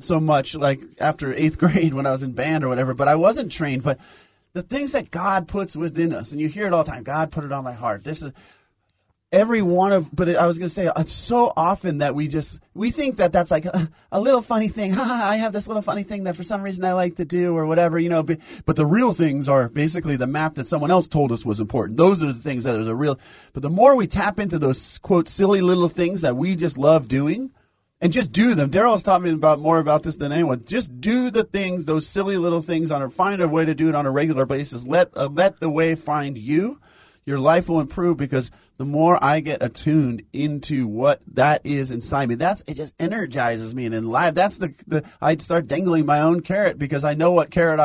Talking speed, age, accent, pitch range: 250 wpm, 30-49, American, 140-180 Hz